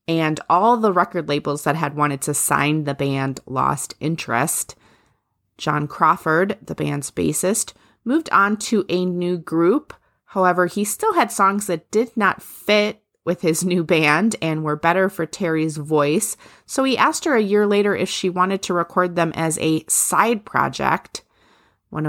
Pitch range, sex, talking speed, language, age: 145-185 Hz, female, 170 wpm, English, 30-49